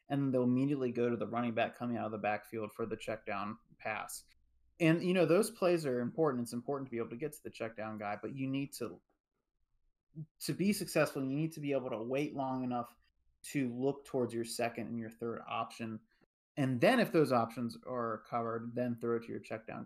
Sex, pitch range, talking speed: male, 115-150 Hz, 230 wpm